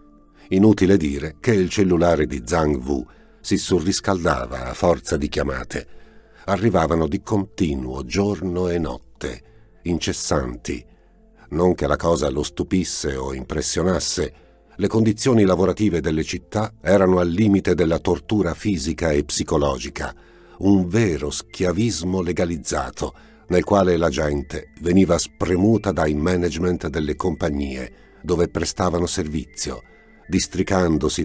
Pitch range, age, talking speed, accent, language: 75-100 Hz, 50-69, 115 wpm, native, Italian